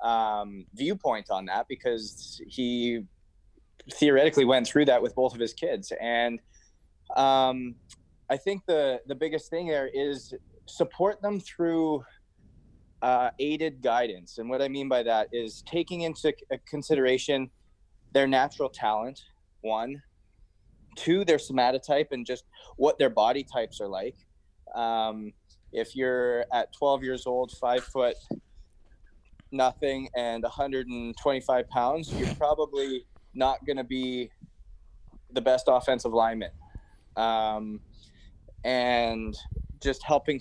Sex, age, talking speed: male, 20-39, 125 wpm